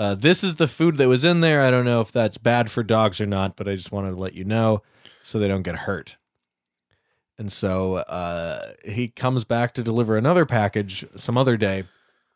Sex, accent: male, American